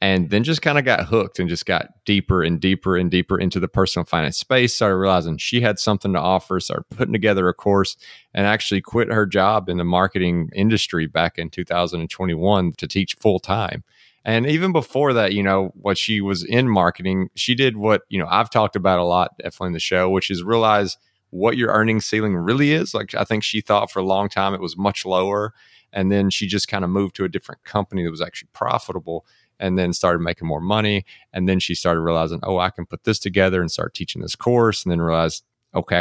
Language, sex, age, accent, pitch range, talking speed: English, male, 30-49, American, 90-110 Hz, 225 wpm